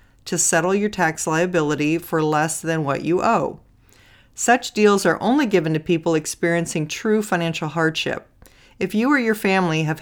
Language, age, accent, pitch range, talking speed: English, 40-59, American, 155-200 Hz, 170 wpm